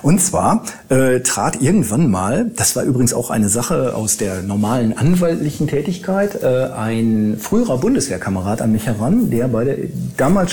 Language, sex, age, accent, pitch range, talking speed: German, male, 40-59, German, 115-140 Hz, 160 wpm